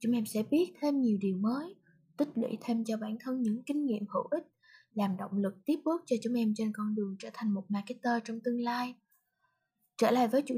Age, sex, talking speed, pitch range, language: 20-39, female, 235 wpm, 215-275 Hz, Vietnamese